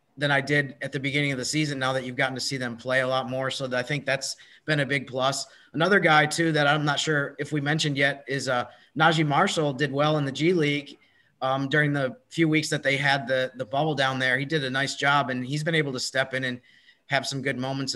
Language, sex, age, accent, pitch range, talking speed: English, male, 30-49, American, 125-145 Hz, 265 wpm